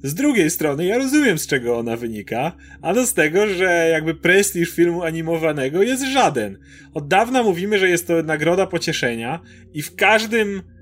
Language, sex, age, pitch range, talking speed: Polish, male, 30-49, 150-205 Hz, 165 wpm